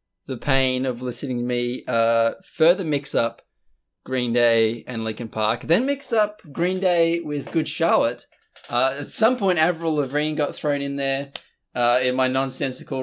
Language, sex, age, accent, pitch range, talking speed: English, male, 20-39, Australian, 130-180 Hz, 170 wpm